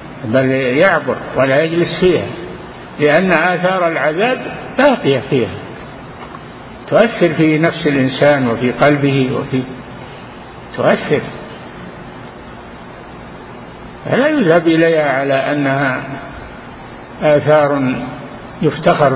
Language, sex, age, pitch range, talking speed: Arabic, male, 50-69, 125-165 Hz, 80 wpm